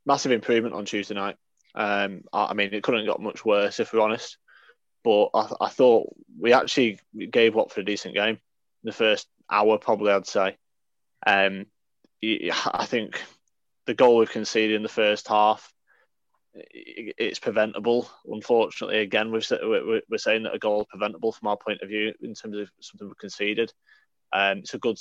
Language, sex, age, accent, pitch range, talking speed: English, male, 20-39, British, 105-140 Hz, 180 wpm